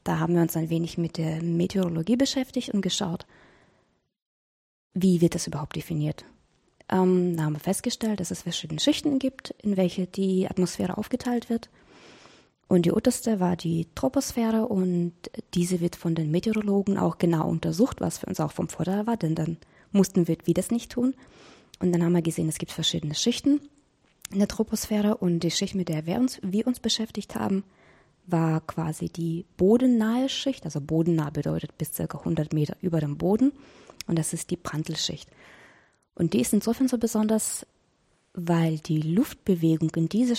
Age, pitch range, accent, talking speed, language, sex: 20-39, 165-215 Hz, German, 175 wpm, German, female